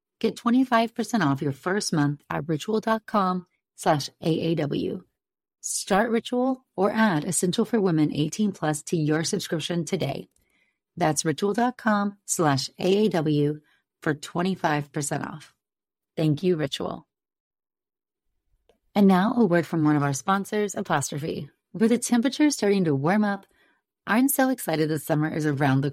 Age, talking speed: 30-49, 135 wpm